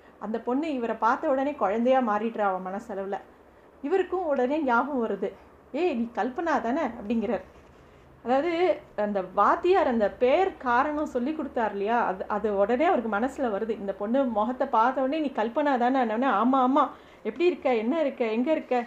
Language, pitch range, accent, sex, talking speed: Tamil, 215-265 Hz, native, female, 155 wpm